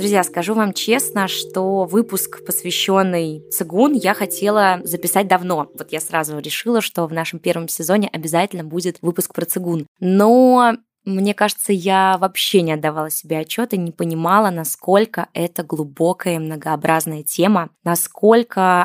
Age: 20-39